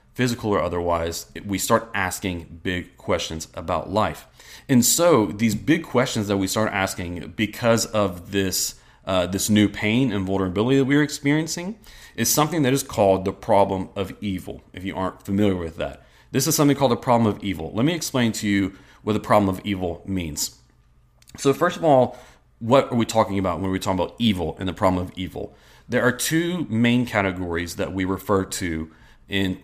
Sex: male